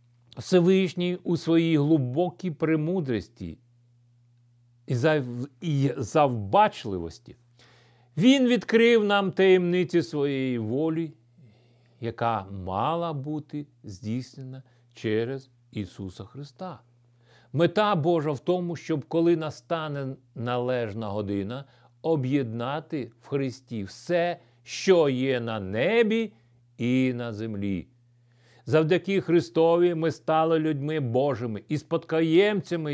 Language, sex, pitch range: Ukrainian, male, 120-170 Hz